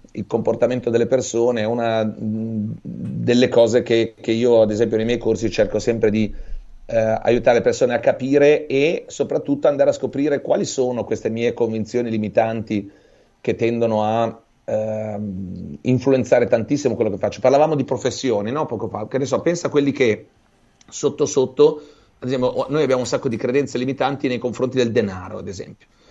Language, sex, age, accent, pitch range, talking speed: Italian, male, 30-49, native, 110-130 Hz, 170 wpm